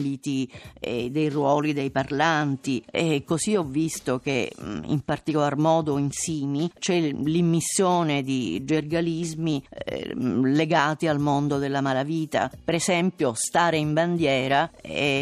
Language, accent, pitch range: Italian, native, 140-165 Hz